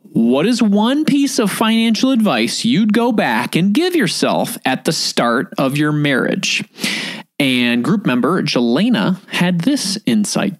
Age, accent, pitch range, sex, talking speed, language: 30-49, American, 180-250 Hz, male, 145 wpm, English